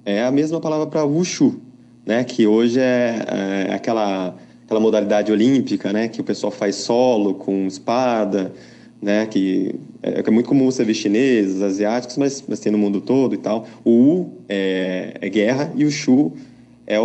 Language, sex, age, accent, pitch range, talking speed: Portuguese, male, 20-39, Brazilian, 105-135 Hz, 175 wpm